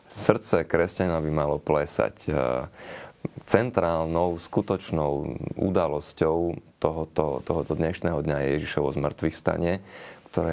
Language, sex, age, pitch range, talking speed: Slovak, male, 30-49, 80-100 Hz, 95 wpm